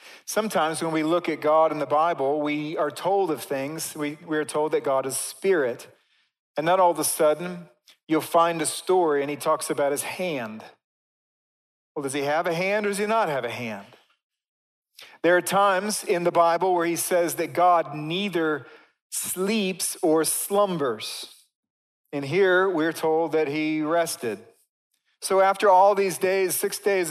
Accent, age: American, 40-59